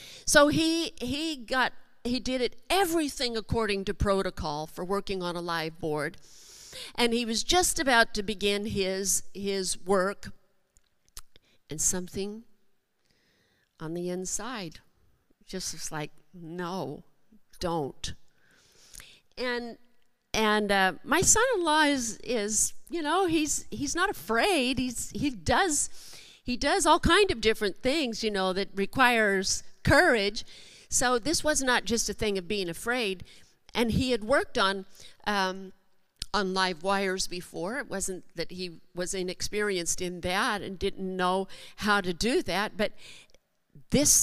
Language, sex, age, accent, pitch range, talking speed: English, female, 50-69, American, 190-245 Hz, 140 wpm